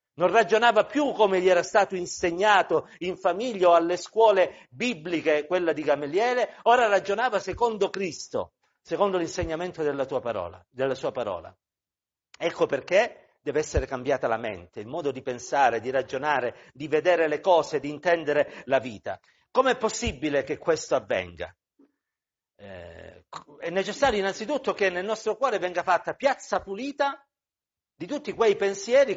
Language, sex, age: Italian, male, 50-69